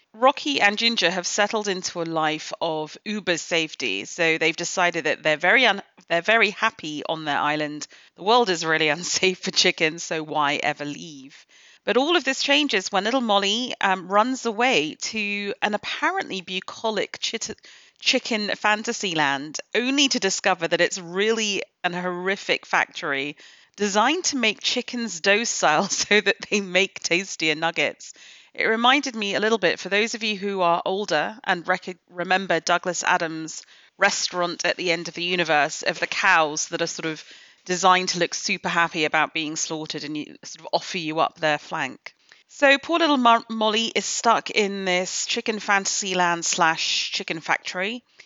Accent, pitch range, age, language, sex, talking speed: British, 165-215 Hz, 40-59, English, female, 170 wpm